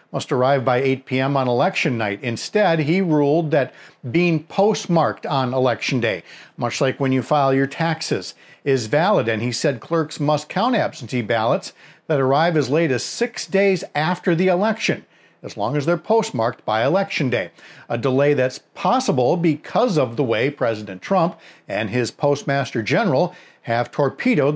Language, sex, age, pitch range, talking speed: English, male, 50-69, 120-170 Hz, 165 wpm